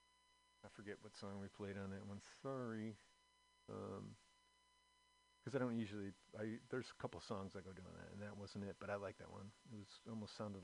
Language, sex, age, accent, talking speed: English, male, 40-59, American, 210 wpm